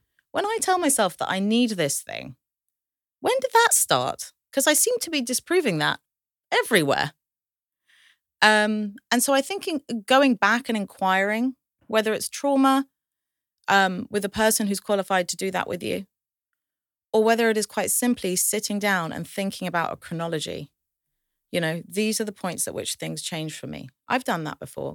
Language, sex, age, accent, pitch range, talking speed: English, female, 30-49, British, 150-220 Hz, 175 wpm